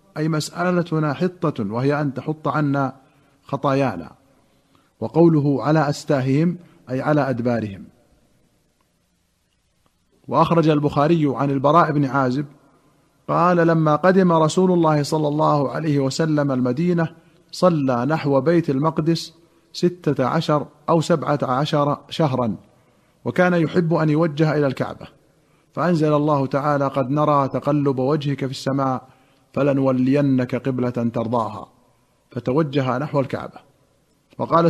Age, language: 50-69, Arabic